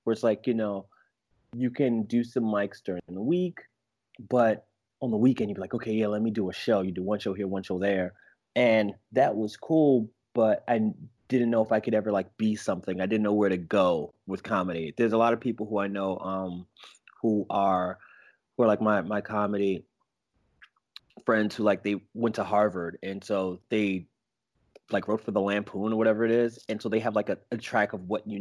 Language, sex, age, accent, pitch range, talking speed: English, male, 30-49, American, 100-120 Hz, 220 wpm